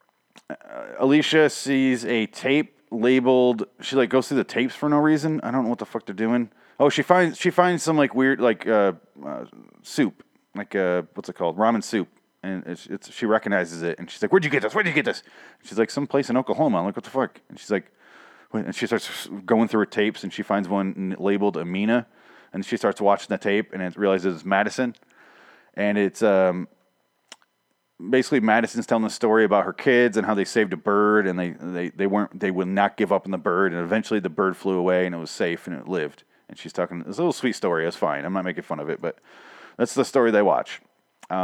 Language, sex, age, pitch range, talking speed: English, male, 30-49, 100-140 Hz, 235 wpm